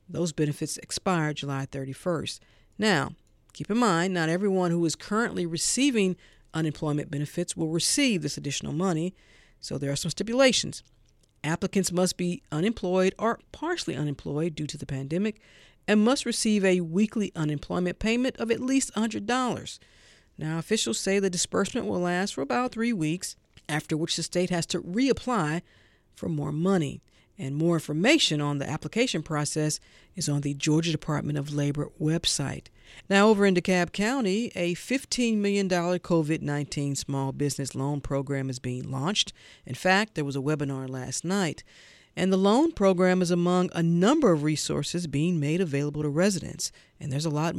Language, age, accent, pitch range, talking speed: English, 50-69, American, 150-195 Hz, 160 wpm